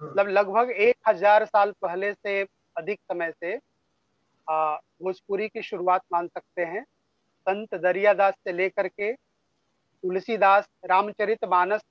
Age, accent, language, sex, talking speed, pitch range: 40-59, native, Hindi, male, 100 wpm, 185-225 Hz